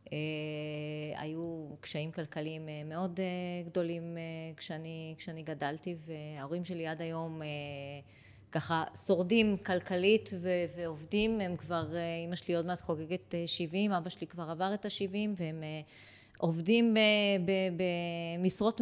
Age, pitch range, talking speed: 20-39, 160-210 Hz, 100 wpm